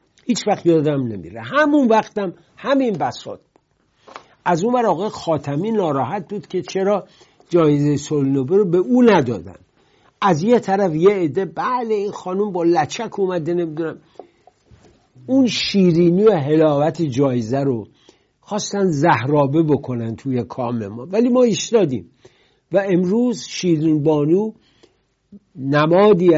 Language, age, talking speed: English, 60-79, 125 wpm